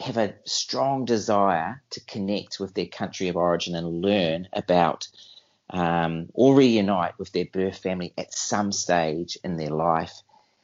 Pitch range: 85-105 Hz